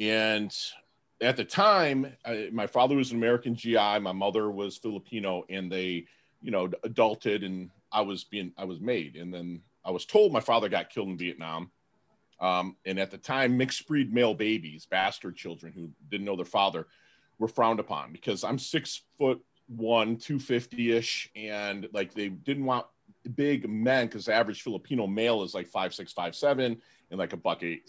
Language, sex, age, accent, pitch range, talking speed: English, male, 40-59, American, 95-125 Hz, 190 wpm